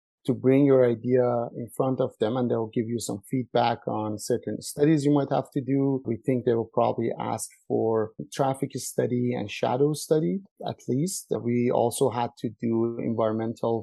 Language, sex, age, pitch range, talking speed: English, male, 30-49, 110-130 Hz, 180 wpm